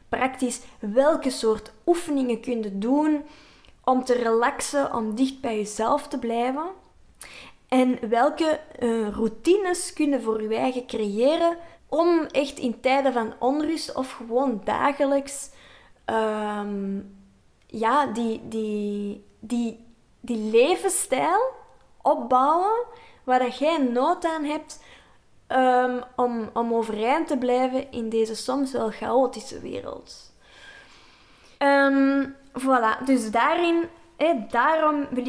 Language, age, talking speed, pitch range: Dutch, 20-39, 110 wpm, 230-300 Hz